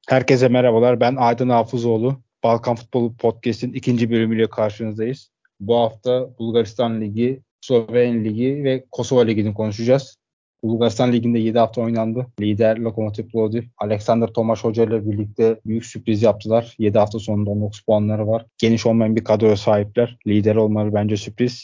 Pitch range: 110-120 Hz